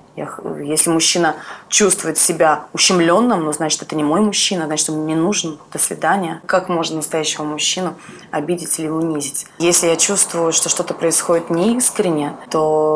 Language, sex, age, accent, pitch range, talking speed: Russian, female, 20-39, native, 155-180 Hz, 150 wpm